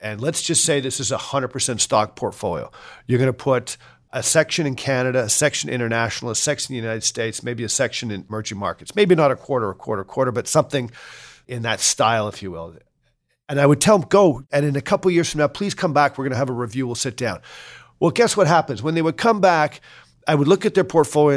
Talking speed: 245 wpm